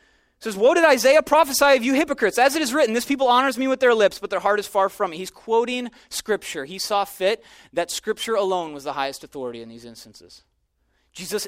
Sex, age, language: male, 30-49, English